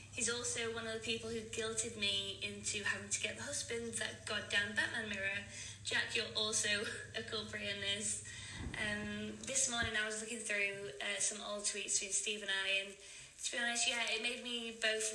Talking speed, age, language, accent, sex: 195 wpm, 20-39, English, British, female